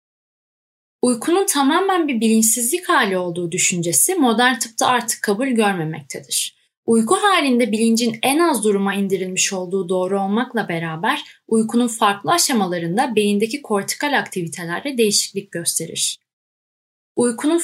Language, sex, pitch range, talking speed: Turkish, female, 180-250 Hz, 110 wpm